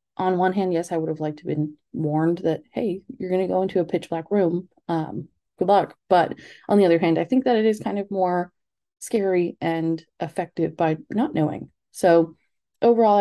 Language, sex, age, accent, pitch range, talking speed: English, female, 30-49, American, 165-190 Hz, 215 wpm